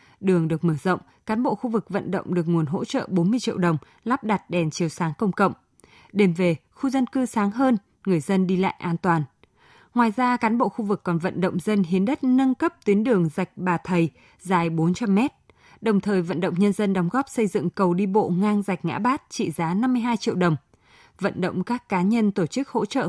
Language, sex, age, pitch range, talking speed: Vietnamese, female, 20-39, 180-225 Hz, 230 wpm